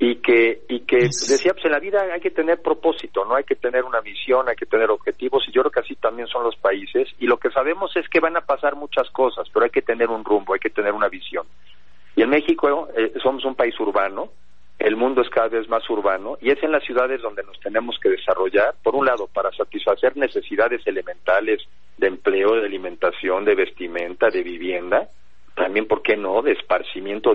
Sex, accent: male, Mexican